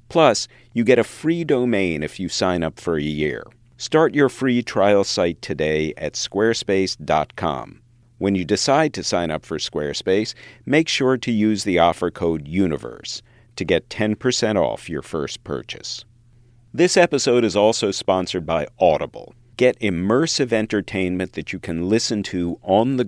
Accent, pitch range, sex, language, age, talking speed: American, 90-120 Hz, male, English, 50-69, 160 wpm